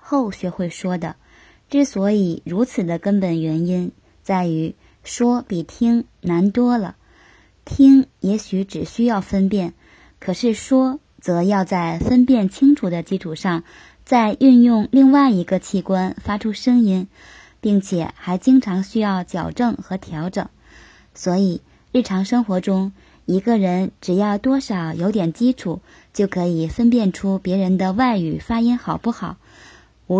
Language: Chinese